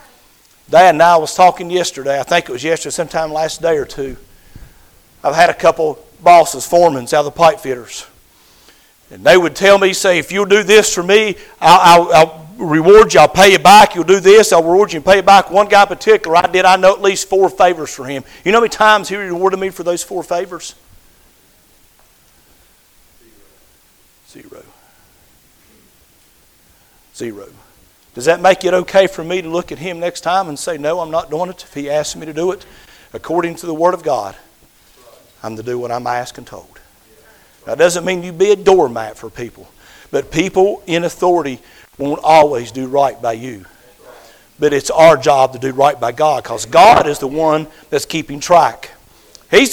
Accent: American